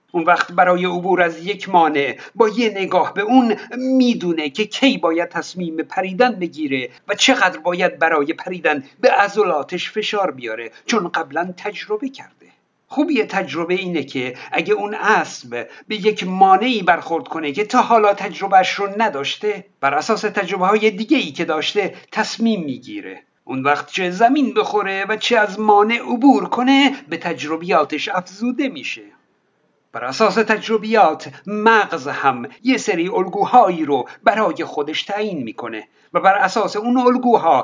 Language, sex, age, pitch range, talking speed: Persian, male, 50-69, 170-220 Hz, 155 wpm